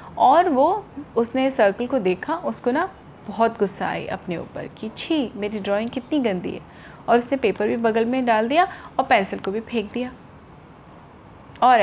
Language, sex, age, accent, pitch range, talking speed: Hindi, female, 30-49, native, 180-260 Hz, 180 wpm